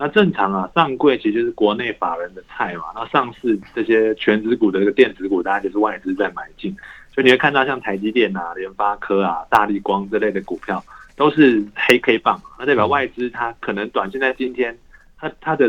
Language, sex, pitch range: Chinese, male, 105-160 Hz